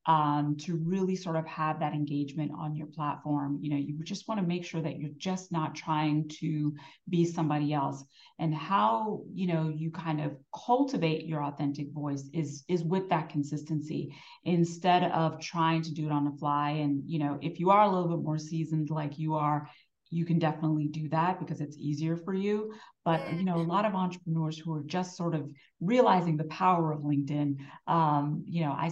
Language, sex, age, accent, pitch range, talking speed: English, female, 30-49, American, 150-170 Hz, 205 wpm